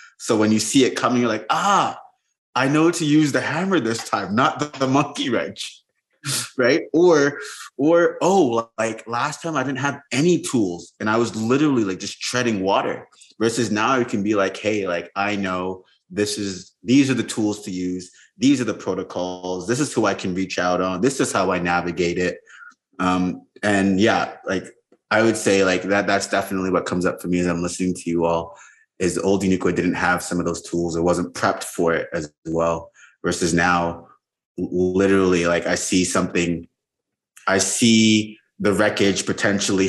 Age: 30-49